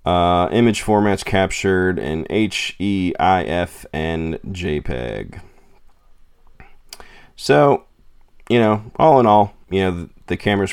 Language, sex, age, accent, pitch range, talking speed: English, male, 30-49, American, 80-100 Hz, 100 wpm